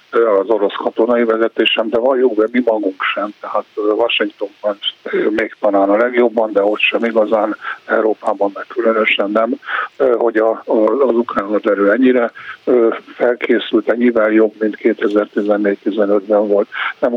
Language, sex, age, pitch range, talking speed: Hungarian, male, 50-69, 105-110 Hz, 125 wpm